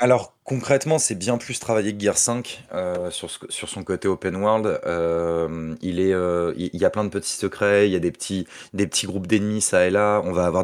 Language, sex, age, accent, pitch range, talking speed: French, male, 30-49, French, 85-105 Hz, 245 wpm